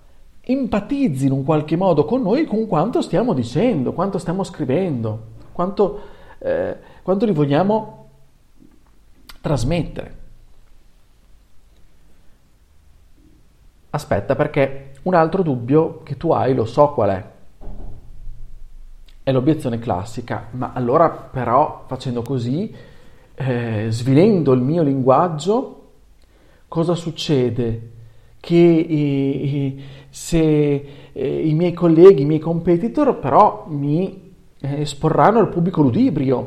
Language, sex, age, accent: Italian, male, 40-59, native